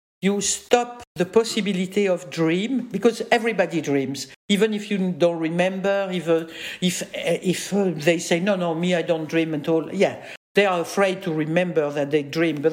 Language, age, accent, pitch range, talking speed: English, 50-69, French, 165-205 Hz, 175 wpm